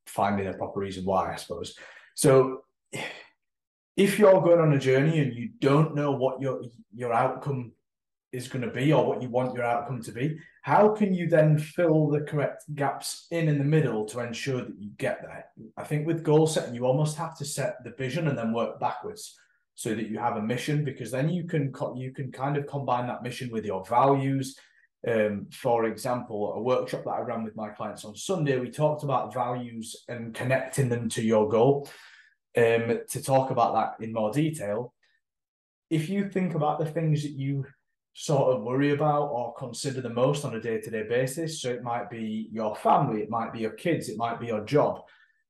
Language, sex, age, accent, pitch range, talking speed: English, male, 20-39, British, 115-150 Hz, 205 wpm